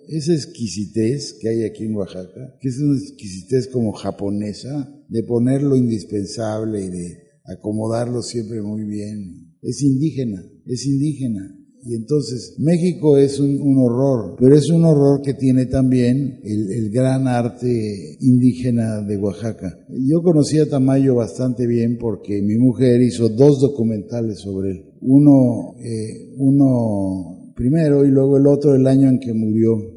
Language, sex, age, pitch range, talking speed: Spanish, male, 50-69, 110-140 Hz, 145 wpm